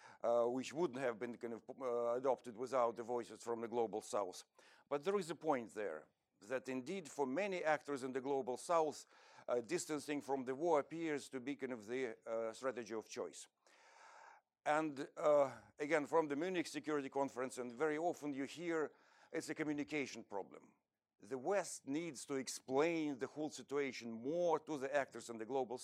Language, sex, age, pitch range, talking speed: English, male, 50-69, 125-155 Hz, 180 wpm